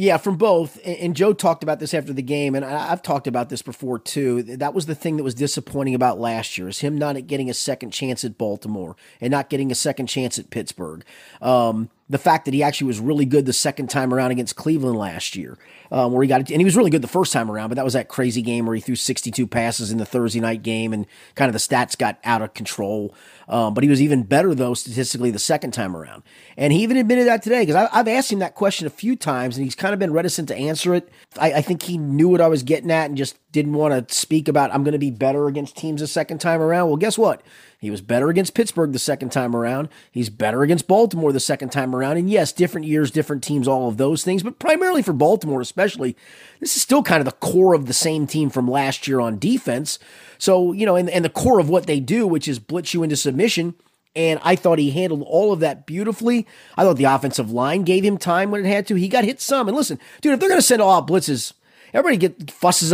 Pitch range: 130-185 Hz